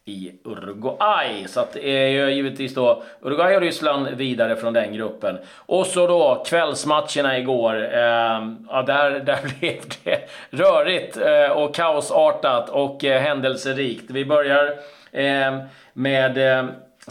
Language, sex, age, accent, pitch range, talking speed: Swedish, male, 40-59, native, 125-150 Hz, 135 wpm